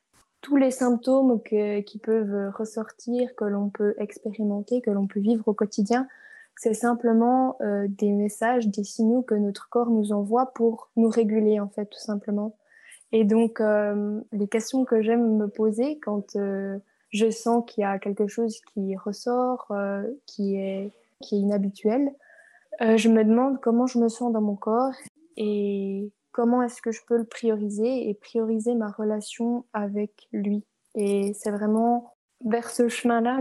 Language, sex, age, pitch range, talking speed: French, female, 20-39, 210-235 Hz, 165 wpm